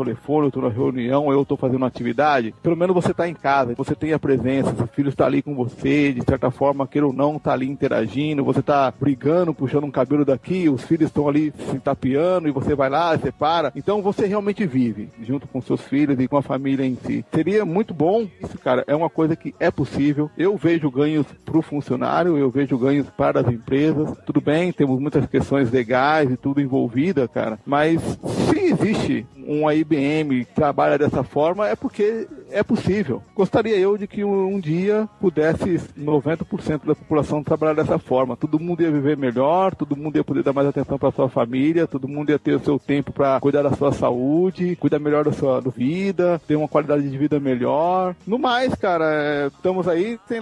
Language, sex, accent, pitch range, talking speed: English, male, Brazilian, 140-170 Hz, 205 wpm